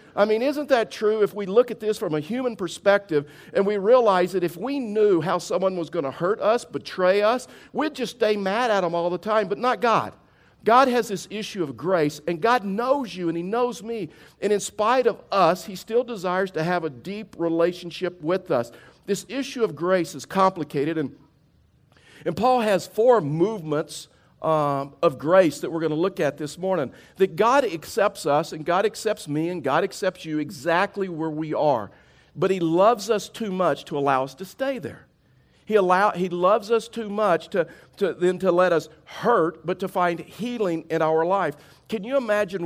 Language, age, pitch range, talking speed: English, 50-69, 160-215 Hz, 205 wpm